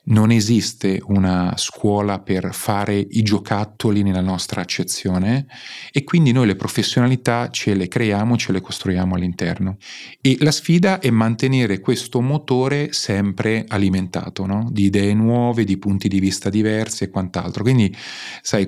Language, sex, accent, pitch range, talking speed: Italian, male, native, 95-120 Hz, 145 wpm